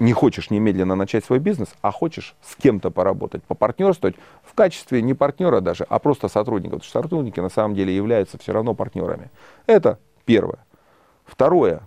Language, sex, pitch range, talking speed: Russian, male, 95-135 Hz, 155 wpm